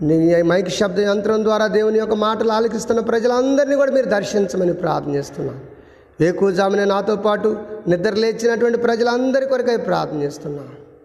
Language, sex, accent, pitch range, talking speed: Telugu, male, native, 185-250 Hz, 135 wpm